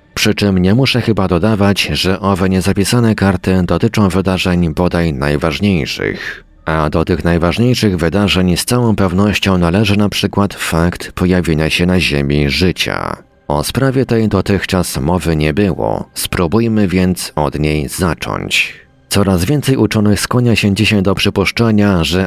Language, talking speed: Polish, 140 wpm